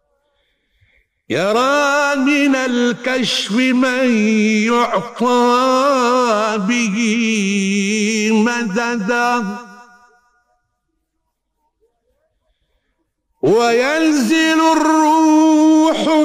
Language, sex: Arabic, male